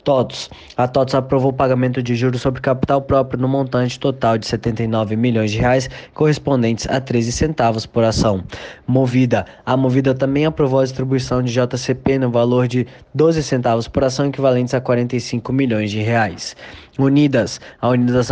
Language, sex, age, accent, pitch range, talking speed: Portuguese, male, 20-39, Brazilian, 120-145 Hz, 175 wpm